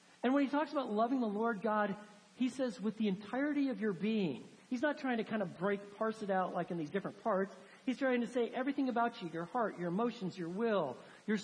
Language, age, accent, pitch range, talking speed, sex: English, 50-69, American, 180-235 Hz, 240 wpm, male